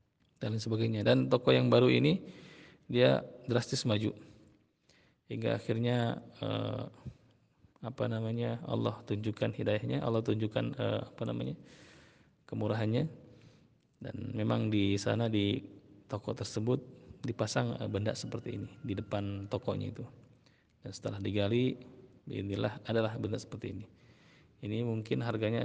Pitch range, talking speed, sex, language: 105-125 Hz, 115 wpm, male, Malay